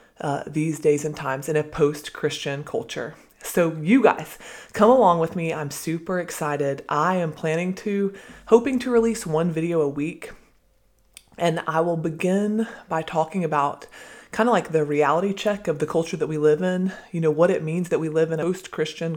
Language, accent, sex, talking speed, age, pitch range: English, American, female, 195 wpm, 20-39, 150-180 Hz